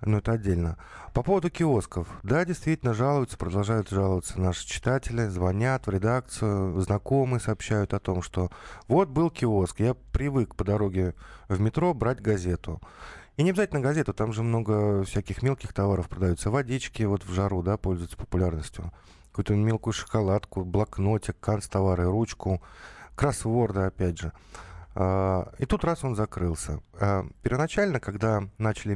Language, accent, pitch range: Russian, native, 95-120 Hz